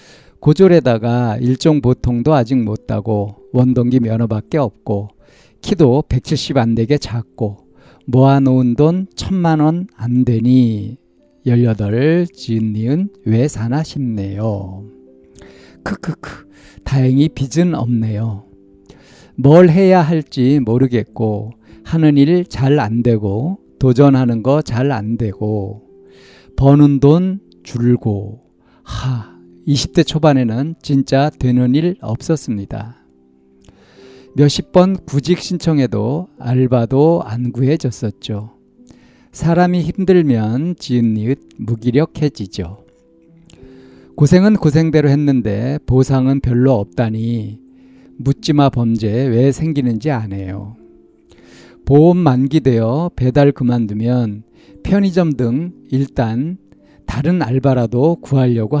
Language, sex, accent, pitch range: Korean, male, native, 110-150 Hz